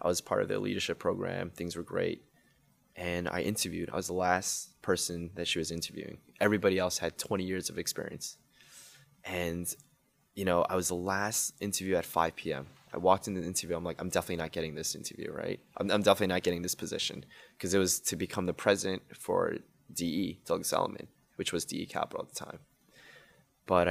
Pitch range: 85-100 Hz